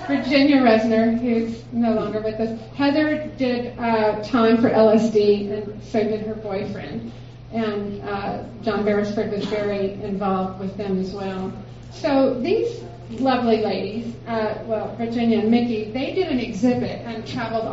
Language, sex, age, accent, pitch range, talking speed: English, female, 40-59, American, 205-235 Hz, 150 wpm